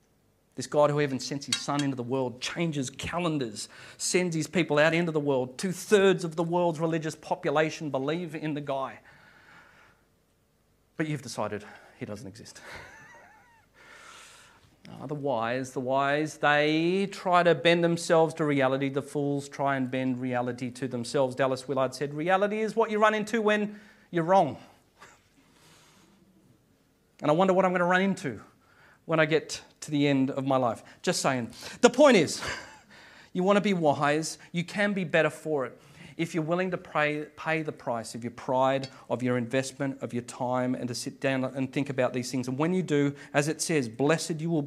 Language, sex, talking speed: English, male, 185 wpm